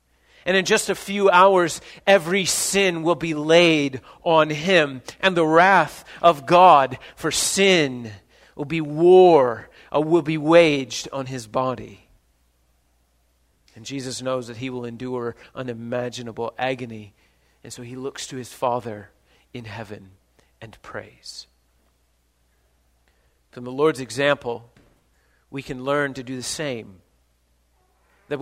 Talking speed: 130 wpm